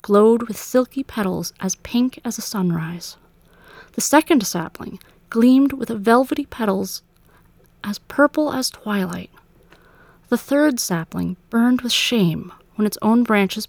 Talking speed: 130 wpm